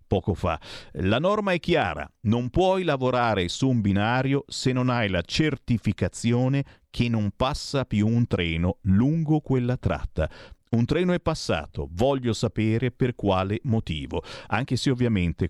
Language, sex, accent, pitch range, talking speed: Italian, male, native, 95-120 Hz, 145 wpm